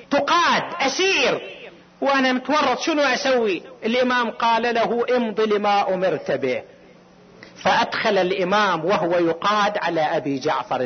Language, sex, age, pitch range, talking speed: Arabic, male, 50-69, 185-250 Hz, 110 wpm